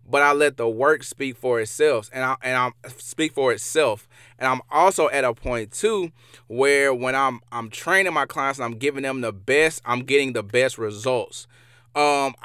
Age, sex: 20-39, male